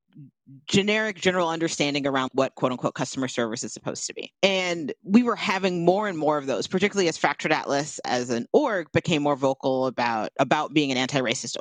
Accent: American